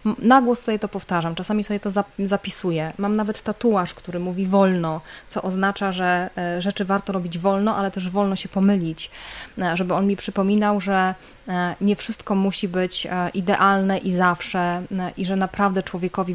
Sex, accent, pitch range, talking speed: female, native, 175-200 Hz, 155 wpm